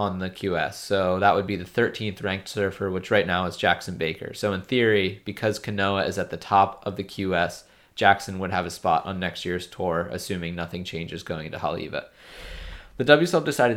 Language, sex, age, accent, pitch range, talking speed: English, male, 20-39, American, 95-110 Hz, 205 wpm